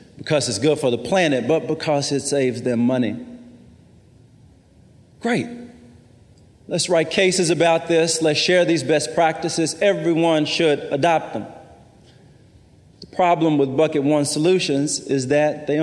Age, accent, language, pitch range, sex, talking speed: 40-59, American, English, 130-165 Hz, male, 135 wpm